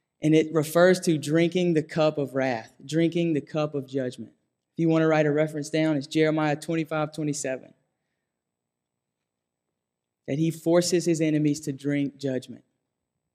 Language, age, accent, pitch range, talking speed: English, 20-39, American, 140-170 Hz, 155 wpm